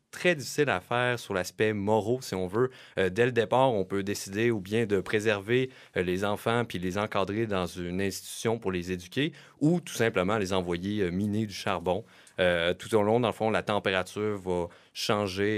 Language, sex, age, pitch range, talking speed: French, male, 30-49, 90-110 Hz, 205 wpm